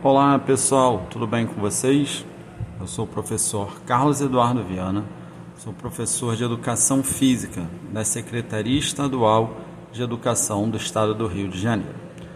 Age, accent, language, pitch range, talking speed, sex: 40-59, Brazilian, Portuguese, 110-155 Hz, 140 wpm, male